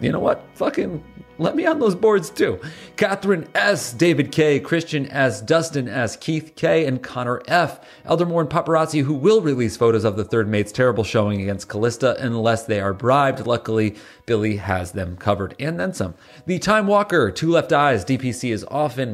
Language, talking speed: English, 185 wpm